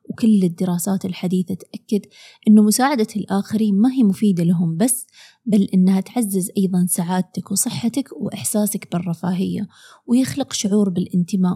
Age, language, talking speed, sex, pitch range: 20-39, Arabic, 120 wpm, female, 185-230 Hz